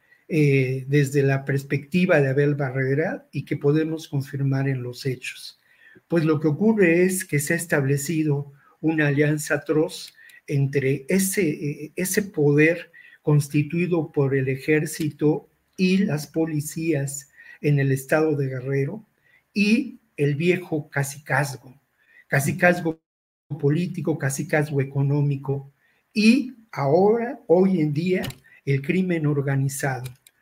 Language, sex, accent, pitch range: Spanish, male, Mexican, 140-175 Hz